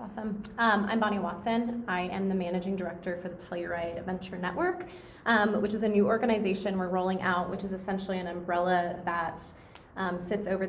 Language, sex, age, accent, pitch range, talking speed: English, female, 20-39, American, 175-205 Hz, 185 wpm